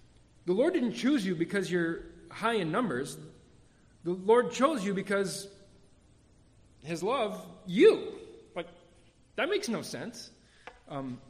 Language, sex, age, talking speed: English, male, 40-59, 125 wpm